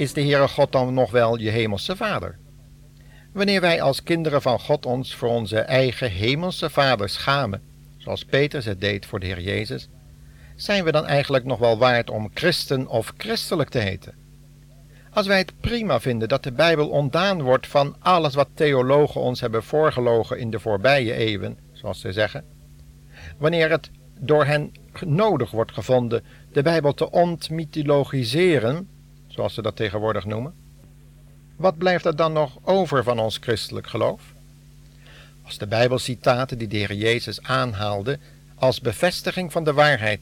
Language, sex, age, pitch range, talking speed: Dutch, male, 60-79, 115-145 Hz, 160 wpm